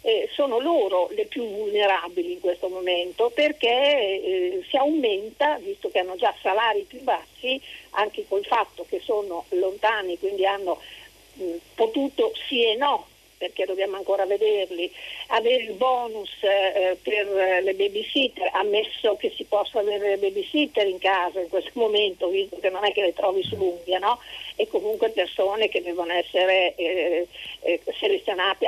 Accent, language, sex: native, Italian, female